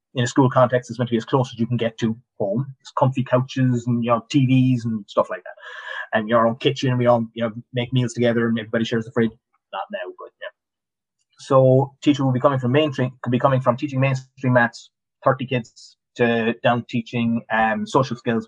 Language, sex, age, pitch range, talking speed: English, male, 30-49, 115-140 Hz, 235 wpm